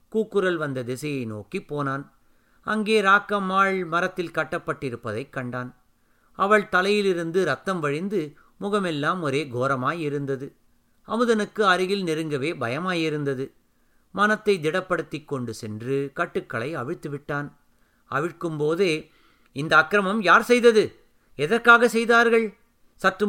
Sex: male